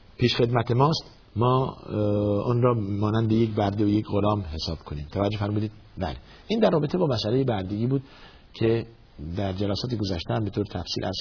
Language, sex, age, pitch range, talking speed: Persian, male, 50-69, 105-145 Hz, 170 wpm